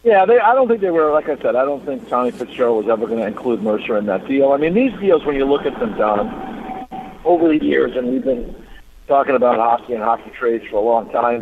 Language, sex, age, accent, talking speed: English, male, 50-69, American, 265 wpm